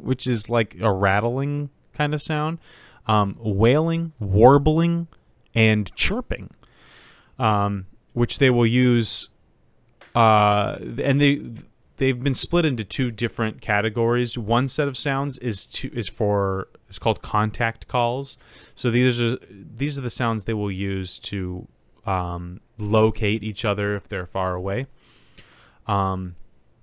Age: 30-49